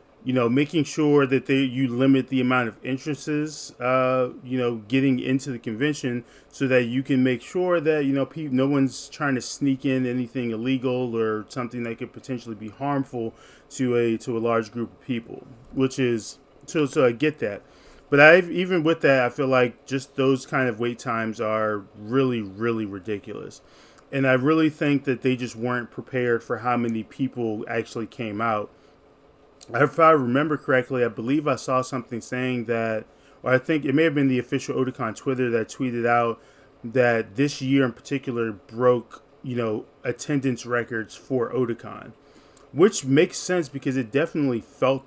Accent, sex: American, male